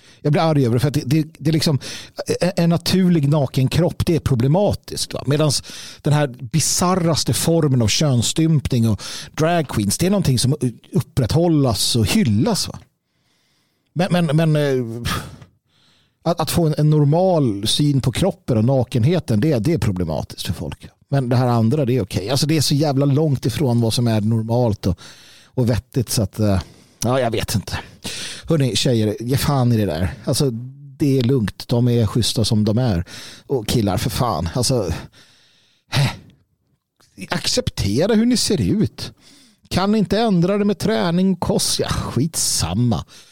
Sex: male